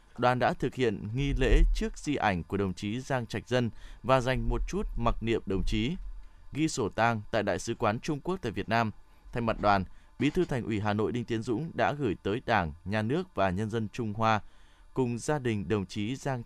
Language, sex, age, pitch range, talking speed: Vietnamese, male, 20-39, 100-130 Hz, 235 wpm